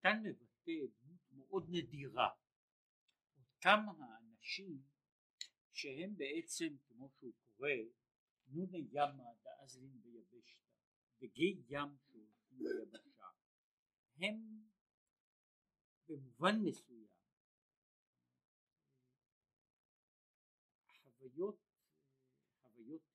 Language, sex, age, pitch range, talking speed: Hebrew, male, 60-79, 120-190 Hz, 55 wpm